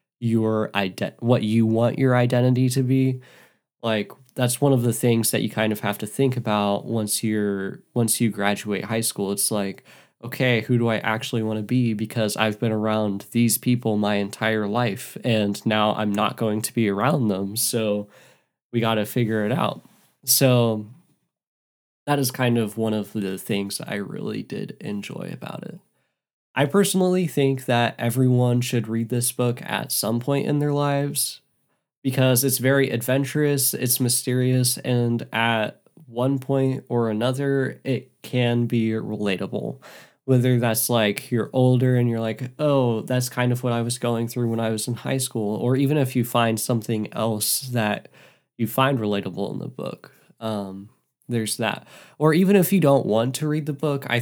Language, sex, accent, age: English, male, American, 20-39